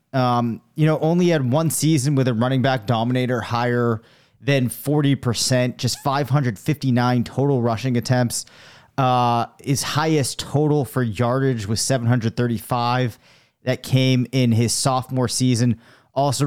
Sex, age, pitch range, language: male, 30-49, 120-140 Hz, English